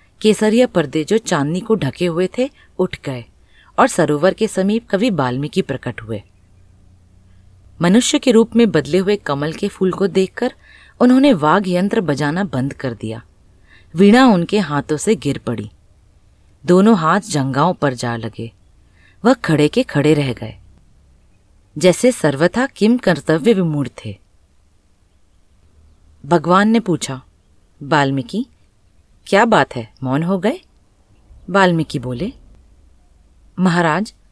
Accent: native